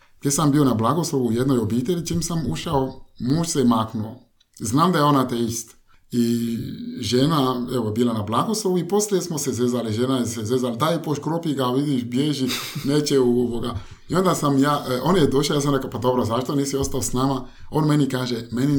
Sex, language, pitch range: male, Croatian, 110-140 Hz